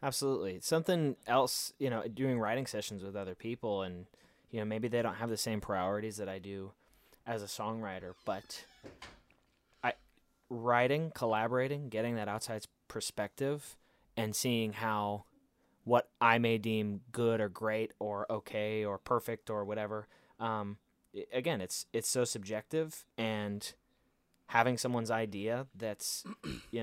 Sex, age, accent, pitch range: male, 20-39, American, 100-115 Hz